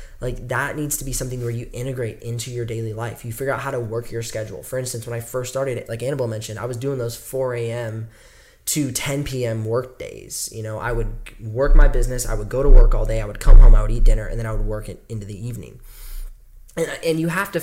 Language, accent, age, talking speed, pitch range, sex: English, American, 10-29, 265 wpm, 110-130 Hz, male